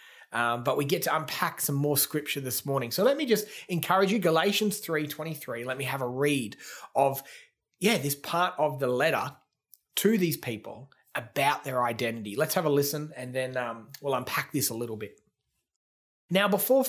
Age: 30-49